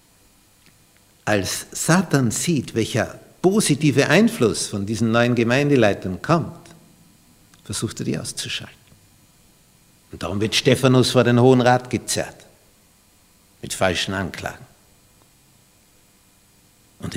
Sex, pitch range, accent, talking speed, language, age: male, 100-140 Hz, Austrian, 100 wpm, German, 60-79